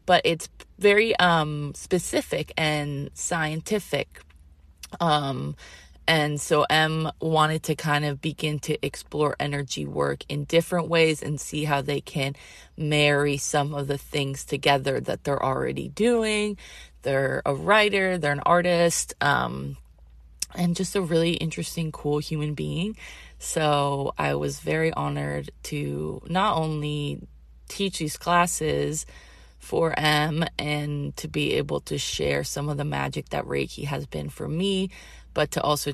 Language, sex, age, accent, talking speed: English, female, 20-39, American, 140 wpm